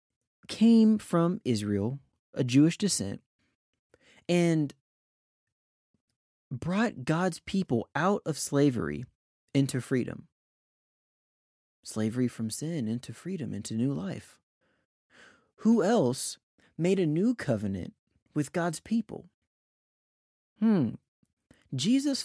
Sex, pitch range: male, 120-175 Hz